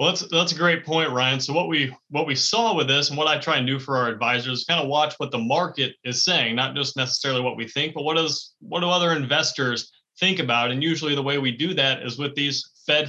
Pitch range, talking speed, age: 130-165 Hz, 270 wpm, 30-49